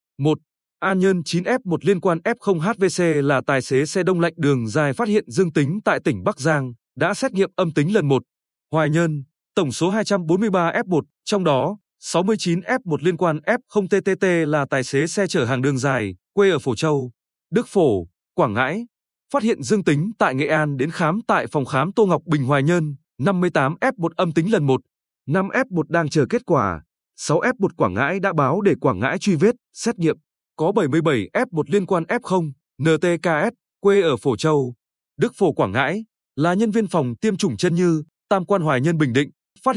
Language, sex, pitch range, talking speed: Vietnamese, male, 145-200 Hz, 190 wpm